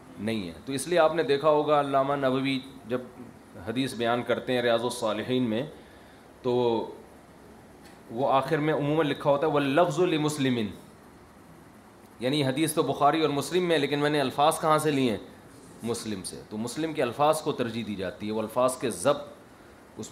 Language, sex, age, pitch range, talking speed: Urdu, male, 30-49, 115-145 Hz, 180 wpm